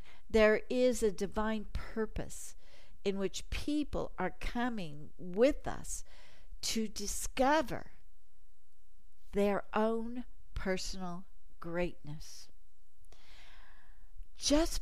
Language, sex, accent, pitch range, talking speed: English, female, American, 175-240 Hz, 75 wpm